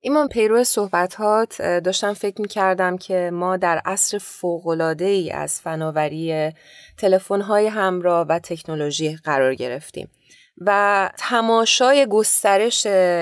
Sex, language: female, Persian